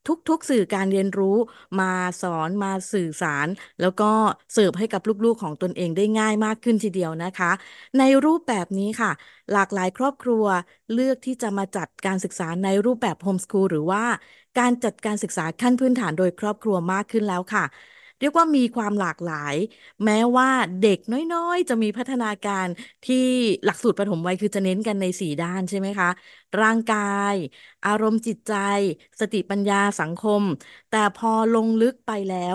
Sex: female